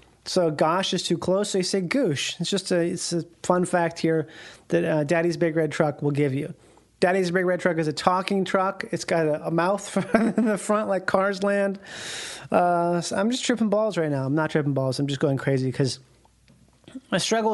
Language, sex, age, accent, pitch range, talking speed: English, male, 30-49, American, 160-205 Hz, 220 wpm